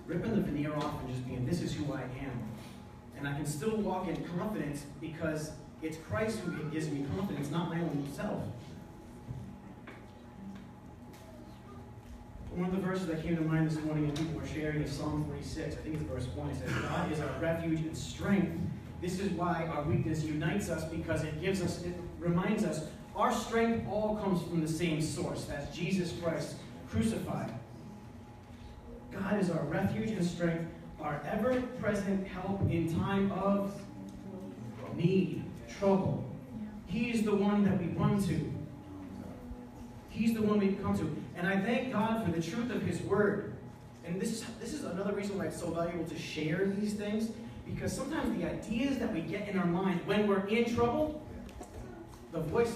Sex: male